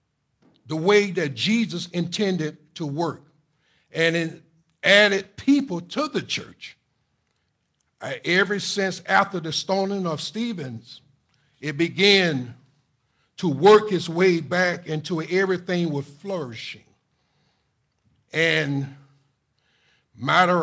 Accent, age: American, 60-79